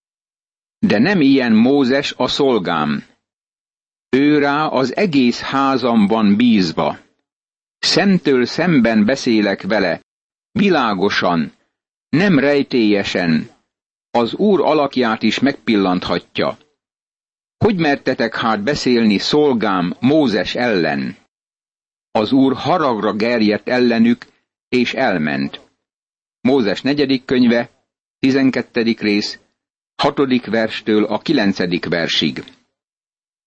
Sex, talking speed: male, 85 wpm